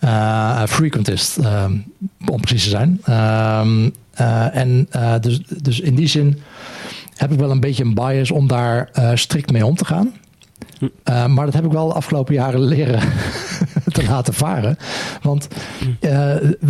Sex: male